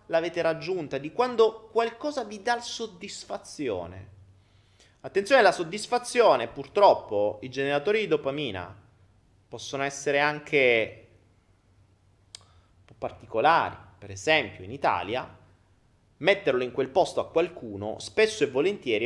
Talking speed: 110 wpm